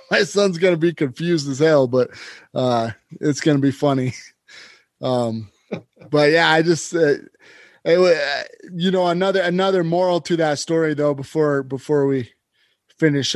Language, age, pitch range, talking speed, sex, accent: English, 20-39, 135-165 Hz, 160 wpm, male, American